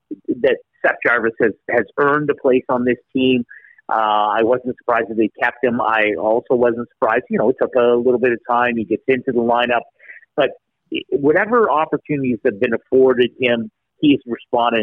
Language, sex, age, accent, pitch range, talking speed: English, male, 50-69, American, 120-175 Hz, 185 wpm